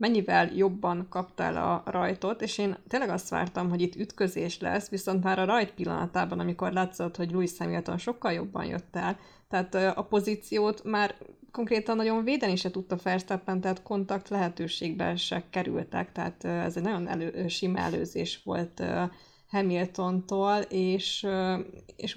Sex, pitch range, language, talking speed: female, 180-205 Hz, Hungarian, 145 wpm